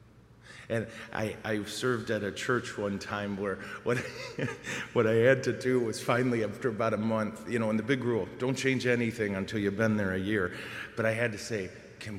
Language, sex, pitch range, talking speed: English, male, 110-135 Hz, 210 wpm